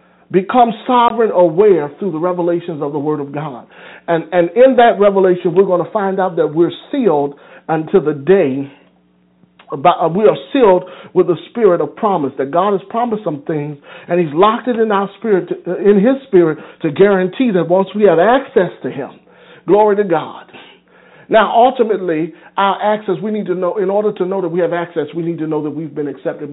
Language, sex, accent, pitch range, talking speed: English, male, American, 160-210 Hz, 195 wpm